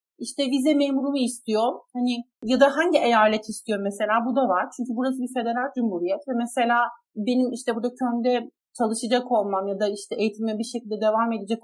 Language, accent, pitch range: Turkish, native, 205-275 Hz